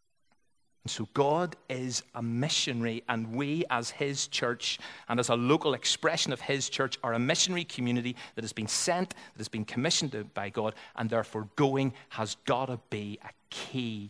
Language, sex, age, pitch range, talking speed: English, male, 40-59, 110-130 Hz, 175 wpm